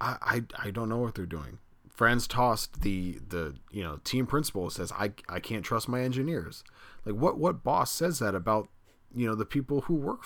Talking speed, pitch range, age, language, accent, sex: 205 wpm, 95-115 Hz, 30-49, English, American, male